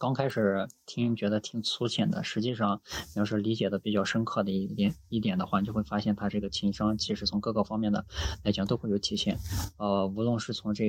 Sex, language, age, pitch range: male, Chinese, 20-39, 100-125 Hz